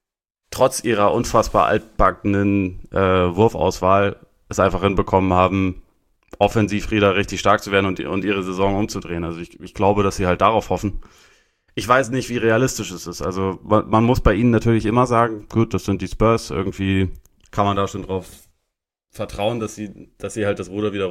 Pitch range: 95-110 Hz